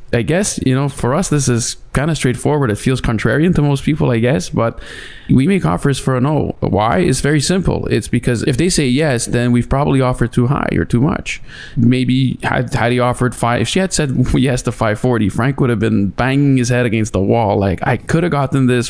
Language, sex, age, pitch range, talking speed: English, male, 20-39, 115-135 Hz, 235 wpm